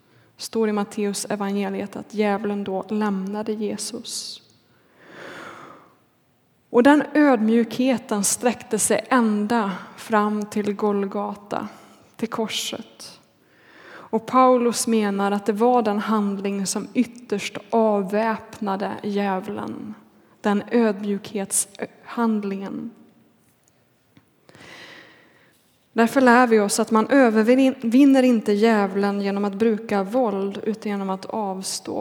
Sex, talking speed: female, 95 wpm